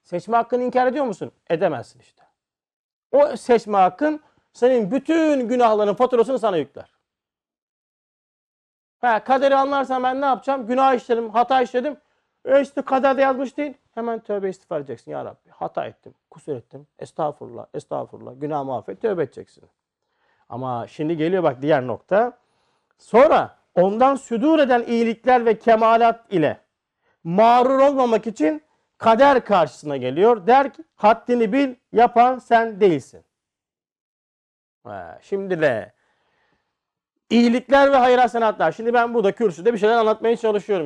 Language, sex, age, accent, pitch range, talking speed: Turkish, male, 50-69, native, 175-265 Hz, 130 wpm